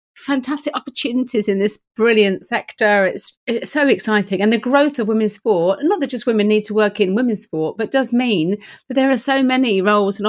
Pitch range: 180-220 Hz